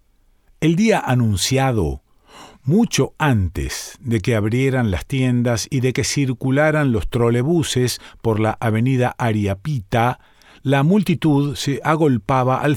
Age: 40-59